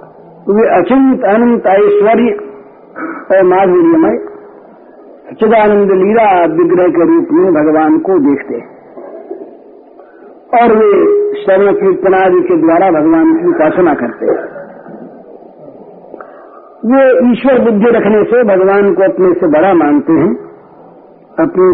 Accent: native